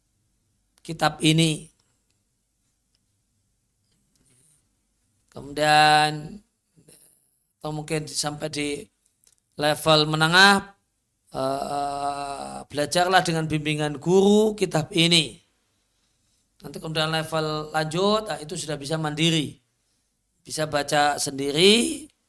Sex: male